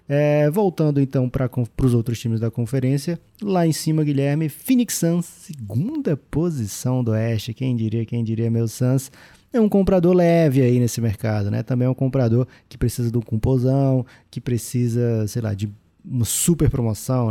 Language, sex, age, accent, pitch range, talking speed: Portuguese, male, 20-39, Brazilian, 115-140 Hz, 170 wpm